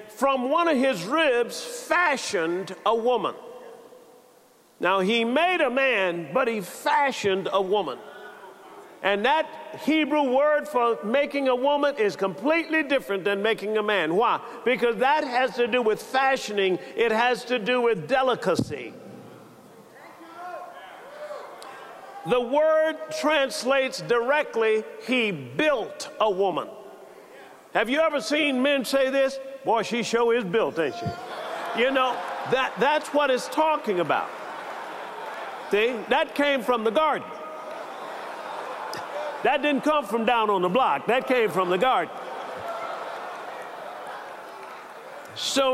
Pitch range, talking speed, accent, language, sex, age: 235-290 Hz, 125 wpm, American, English, male, 50-69